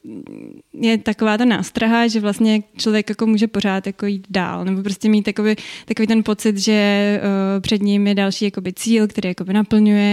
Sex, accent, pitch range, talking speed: female, native, 205-220 Hz, 185 wpm